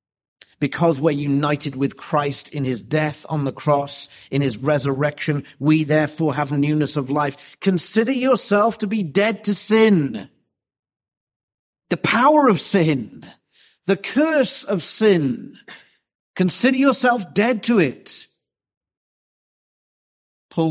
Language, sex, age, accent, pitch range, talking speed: English, male, 50-69, British, 130-180 Hz, 120 wpm